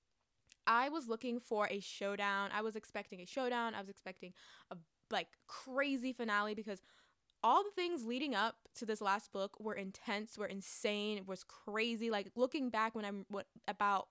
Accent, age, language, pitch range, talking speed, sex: American, 20-39, English, 200-255 Hz, 180 wpm, female